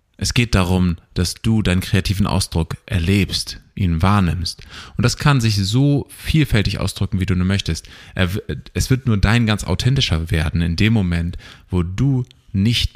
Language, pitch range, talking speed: German, 85-110 Hz, 160 wpm